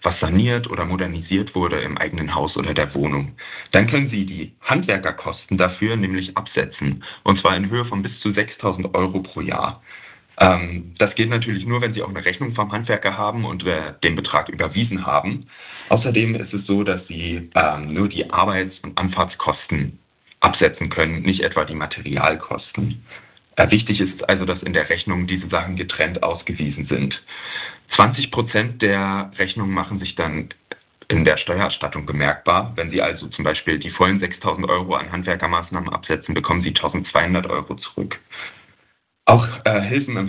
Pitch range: 85-105 Hz